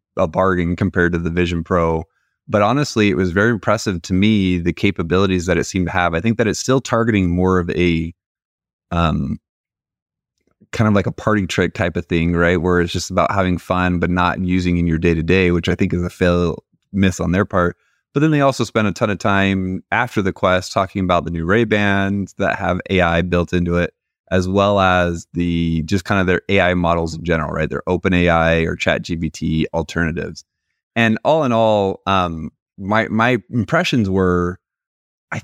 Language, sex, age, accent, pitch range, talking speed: English, male, 20-39, American, 85-105 Hz, 200 wpm